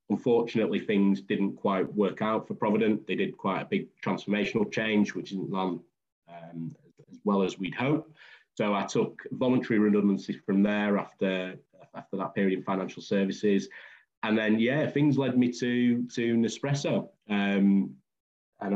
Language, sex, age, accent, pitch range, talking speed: English, male, 30-49, British, 95-110 Hz, 155 wpm